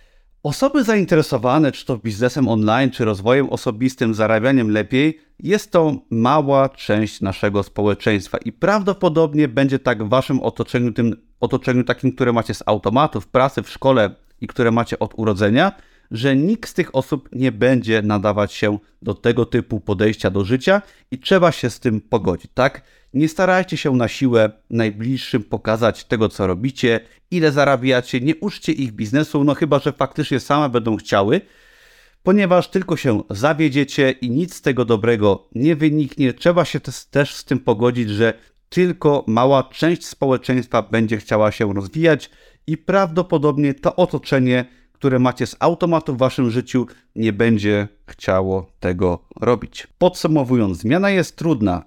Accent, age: native, 30-49